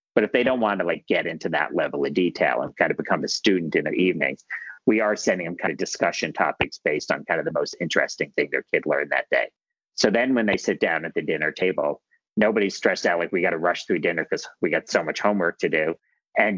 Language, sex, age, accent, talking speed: English, male, 40-59, American, 260 wpm